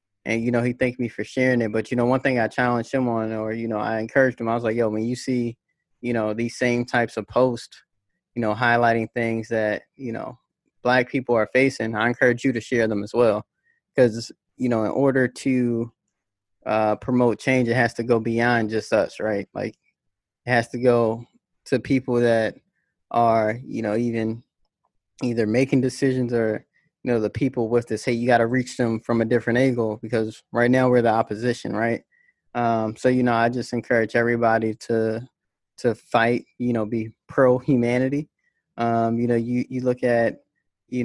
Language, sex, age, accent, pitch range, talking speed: English, male, 20-39, American, 110-125 Hz, 200 wpm